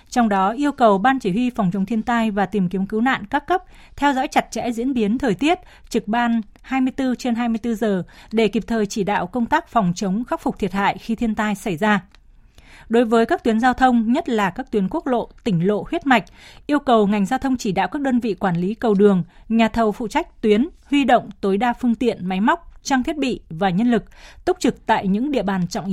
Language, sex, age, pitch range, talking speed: Vietnamese, female, 20-39, 205-260 Hz, 245 wpm